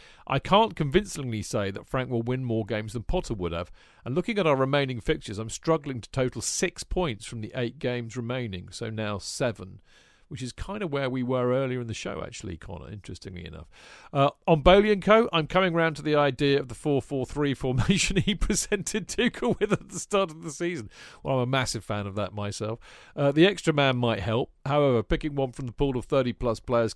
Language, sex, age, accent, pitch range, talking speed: English, male, 40-59, British, 110-150 Hz, 215 wpm